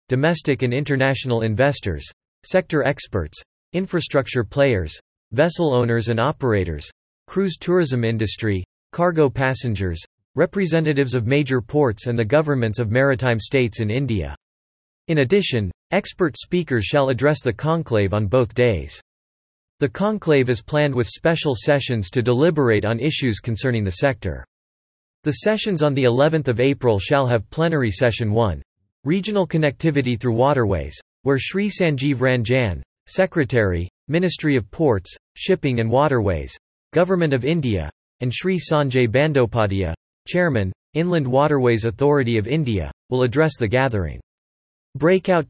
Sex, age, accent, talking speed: male, 40-59, American, 130 wpm